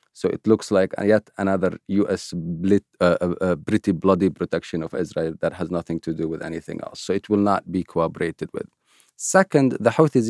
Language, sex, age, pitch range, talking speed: English, male, 40-59, 90-120 Hz, 185 wpm